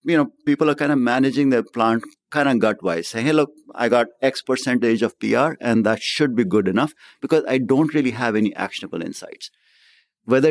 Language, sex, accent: English, male, Indian